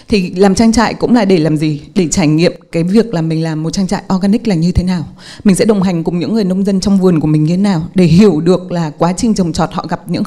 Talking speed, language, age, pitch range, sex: 305 wpm, Vietnamese, 20-39, 180-230 Hz, female